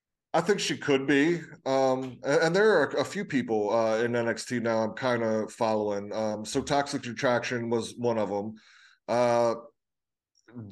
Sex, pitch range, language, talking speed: male, 110-125 Hz, English, 160 wpm